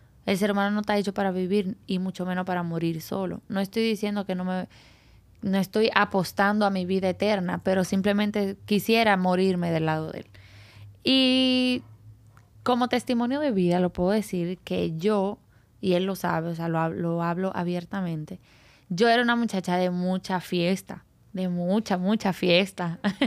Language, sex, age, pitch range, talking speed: Spanish, female, 10-29, 180-215 Hz, 170 wpm